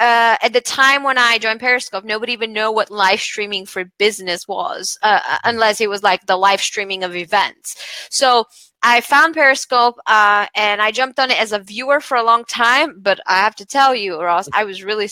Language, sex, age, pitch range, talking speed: English, female, 20-39, 205-255 Hz, 215 wpm